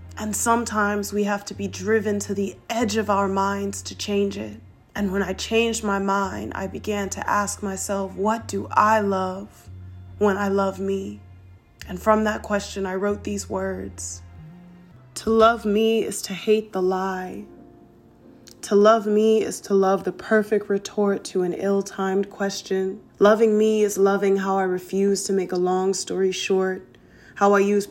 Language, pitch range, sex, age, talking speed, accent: English, 180-200 Hz, female, 20-39, 170 wpm, American